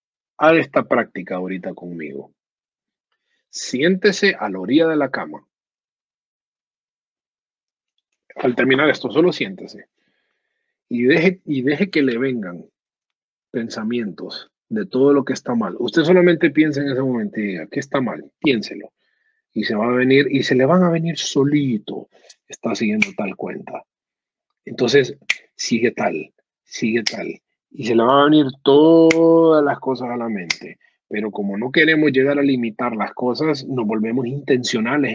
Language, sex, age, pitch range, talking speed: Spanish, male, 40-59, 115-165 Hz, 150 wpm